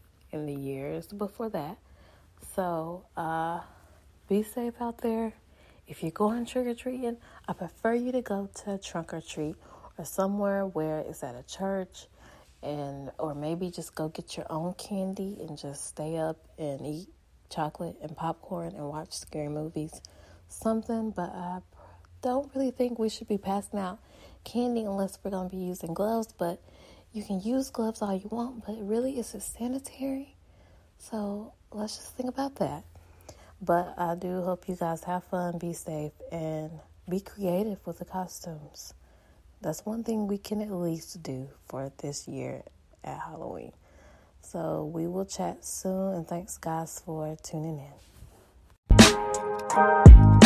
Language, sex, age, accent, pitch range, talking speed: English, female, 30-49, American, 150-205 Hz, 155 wpm